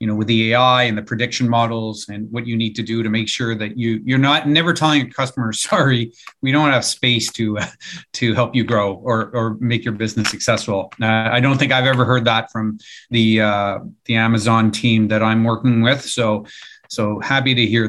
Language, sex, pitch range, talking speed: English, male, 110-130 Hz, 220 wpm